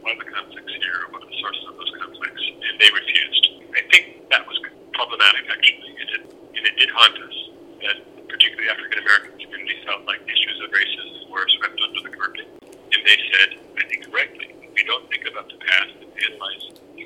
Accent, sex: American, male